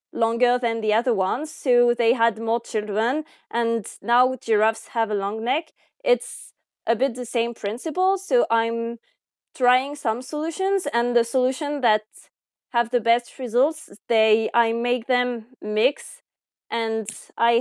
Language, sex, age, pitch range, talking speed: English, female, 20-39, 220-250 Hz, 145 wpm